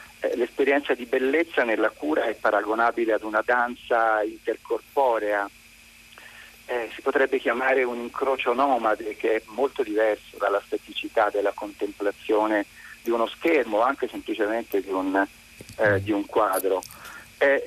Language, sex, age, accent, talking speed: Italian, male, 40-59, native, 130 wpm